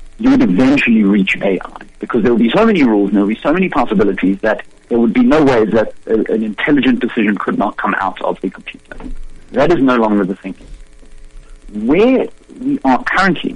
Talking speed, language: 205 wpm, English